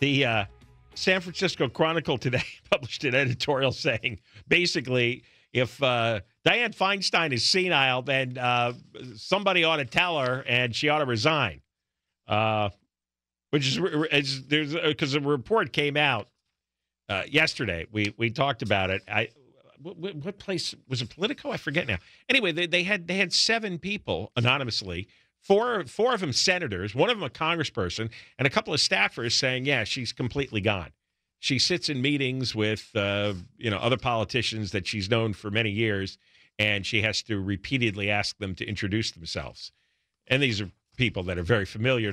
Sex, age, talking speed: male, 50-69, 170 wpm